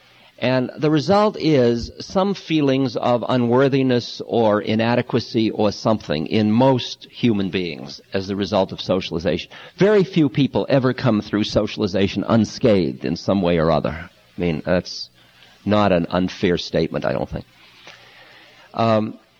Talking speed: 140 wpm